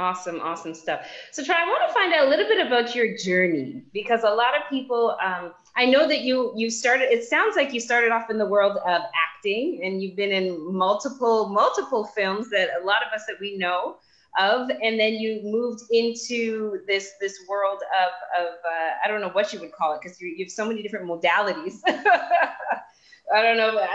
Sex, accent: female, American